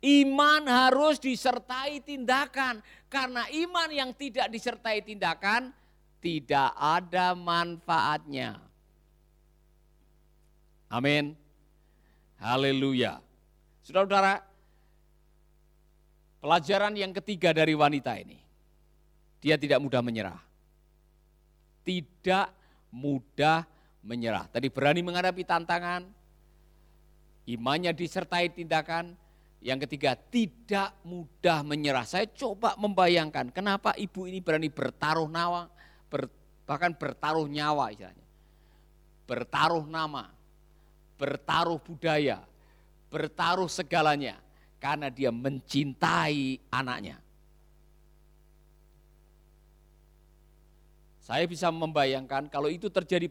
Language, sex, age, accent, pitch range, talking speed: Indonesian, male, 50-69, native, 145-185 Hz, 80 wpm